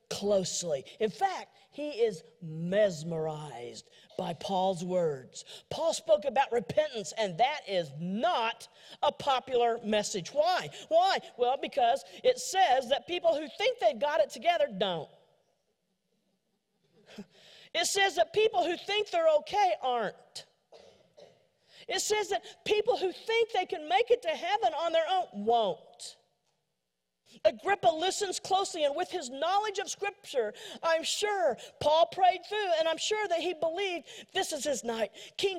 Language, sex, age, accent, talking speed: English, female, 40-59, American, 145 wpm